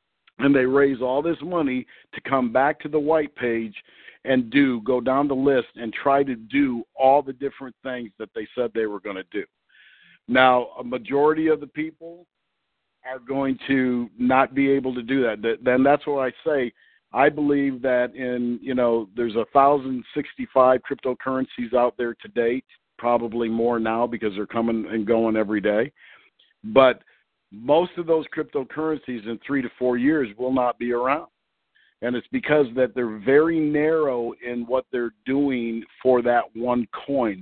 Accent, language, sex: American, English, male